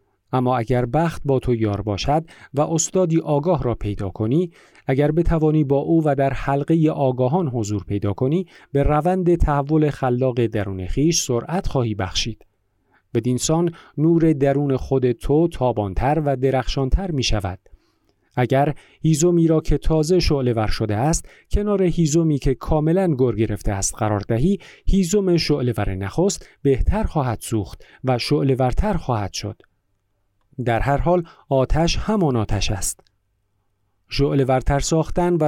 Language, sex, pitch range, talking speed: Persian, male, 105-160 Hz, 140 wpm